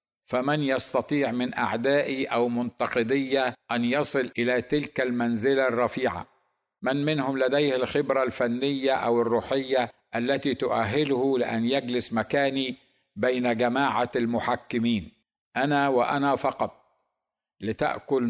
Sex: male